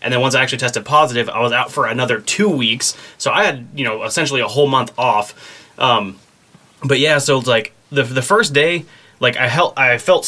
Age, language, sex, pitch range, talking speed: 20-39, English, male, 115-145 Hz, 230 wpm